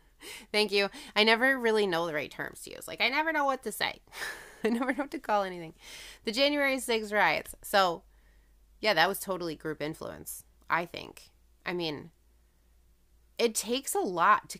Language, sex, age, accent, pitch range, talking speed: English, female, 30-49, American, 160-210 Hz, 185 wpm